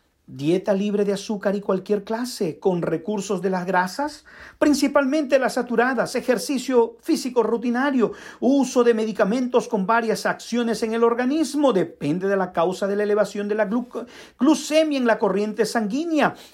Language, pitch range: Spanish, 185-240 Hz